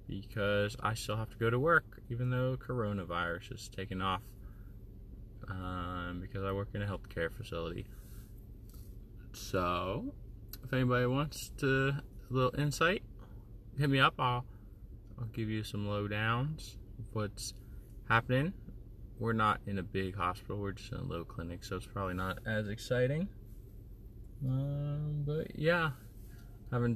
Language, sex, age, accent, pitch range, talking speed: English, male, 20-39, American, 100-120 Hz, 140 wpm